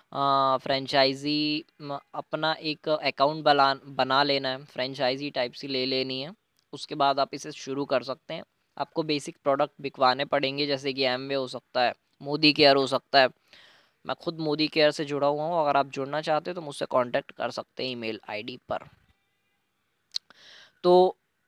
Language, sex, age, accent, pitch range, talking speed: Hindi, female, 20-39, native, 135-160 Hz, 170 wpm